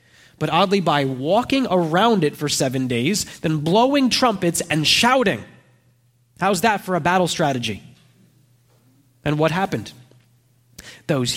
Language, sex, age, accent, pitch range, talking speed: English, male, 20-39, American, 135-195 Hz, 125 wpm